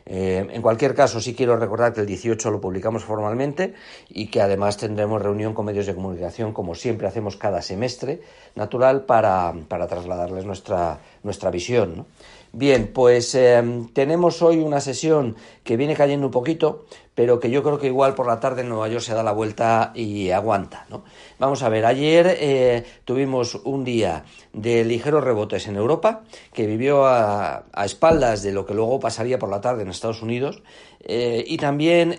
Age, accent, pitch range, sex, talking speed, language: 50-69, Spanish, 105-135 Hz, male, 180 wpm, Spanish